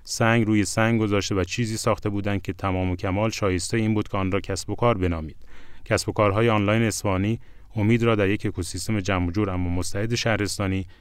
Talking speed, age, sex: 200 wpm, 30-49, male